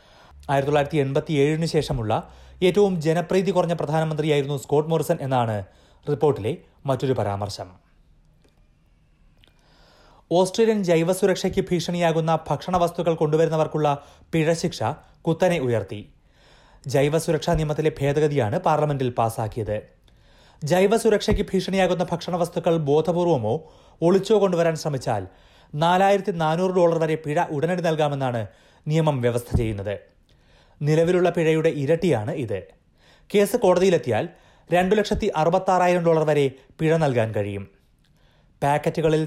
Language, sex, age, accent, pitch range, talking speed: Malayalam, male, 30-49, native, 135-175 Hz, 90 wpm